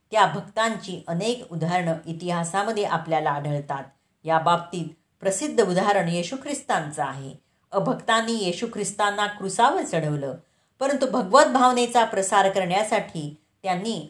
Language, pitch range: Marathi, 160-215 Hz